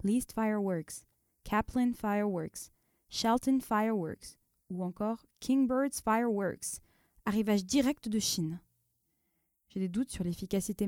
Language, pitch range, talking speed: English, 175-220 Hz, 105 wpm